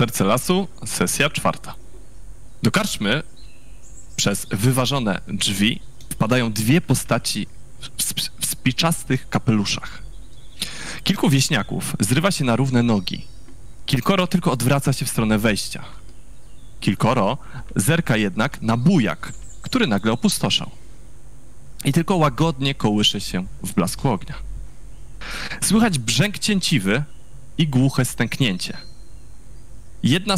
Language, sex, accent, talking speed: Polish, male, native, 110 wpm